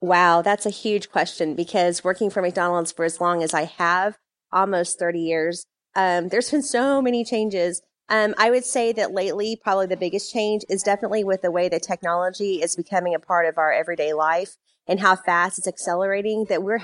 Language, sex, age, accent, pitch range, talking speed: English, female, 30-49, American, 170-205 Hz, 200 wpm